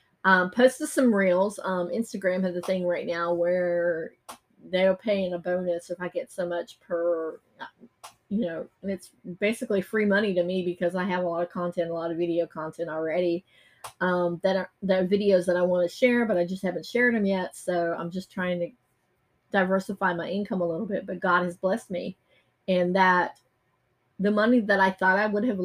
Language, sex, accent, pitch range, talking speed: English, female, American, 175-195 Hz, 205 wpm